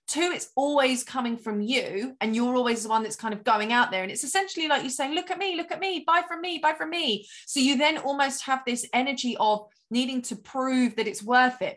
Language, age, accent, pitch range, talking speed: English, 20-39, British, 225-285 Hz, 255 wpm